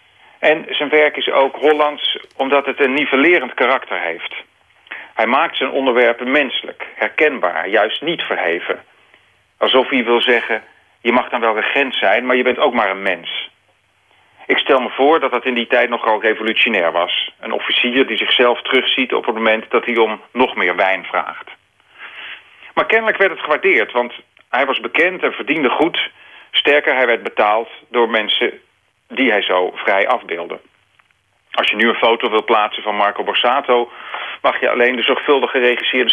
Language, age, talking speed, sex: Dutch, 40-59, 175 wpm, male